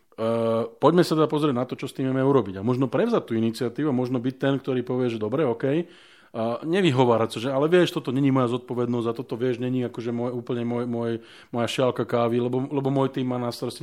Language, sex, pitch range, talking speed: Slovak, male, 115-140 Hz, 225 wpm